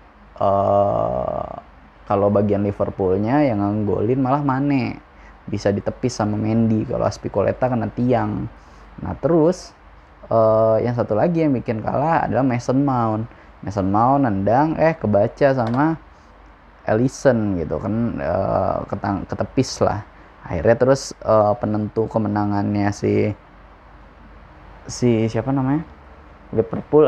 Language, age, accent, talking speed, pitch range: Indonesian, 10-29, native, 115 wpm, 100-120 Hz